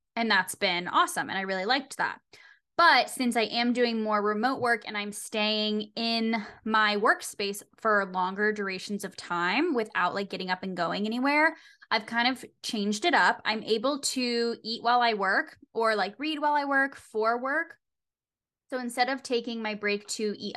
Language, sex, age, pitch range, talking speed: English, female, 10-29, 205-250 Hz, 185 wpm